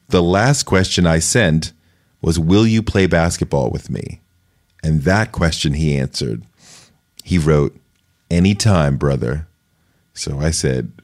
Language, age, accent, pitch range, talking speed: English, 30-49, American, 85-110 Hz, 130 wpm